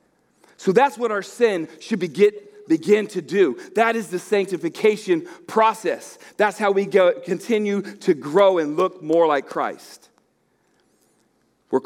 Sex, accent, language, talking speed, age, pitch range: male, American, English, 140 wpm, 40-59, 160-235 Hz